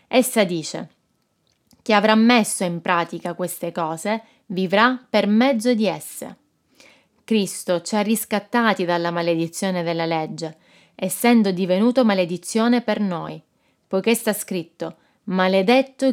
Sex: female